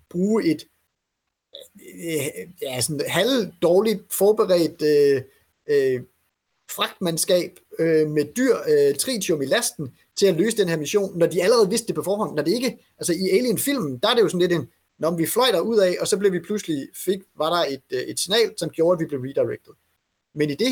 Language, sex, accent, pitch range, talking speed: Danish, male, native, 150-225 Hz, 195 wpm